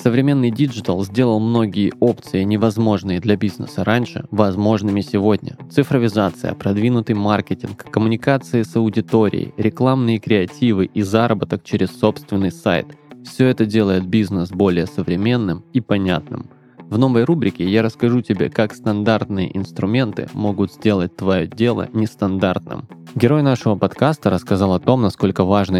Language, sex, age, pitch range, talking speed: Russian, male, 20-39, 95-115 Hz, 125 wpm